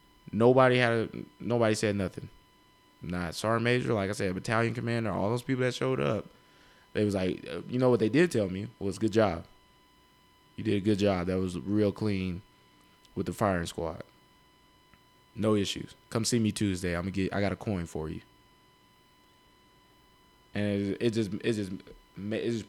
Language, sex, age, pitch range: English, male, 20-39, 95-120 Hz